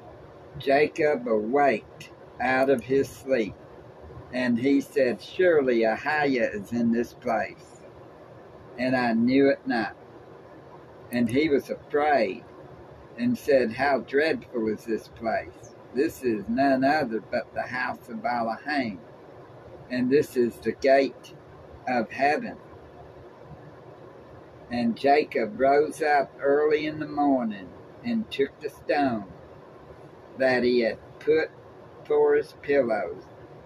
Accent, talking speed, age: American, 120 wpm, 60-79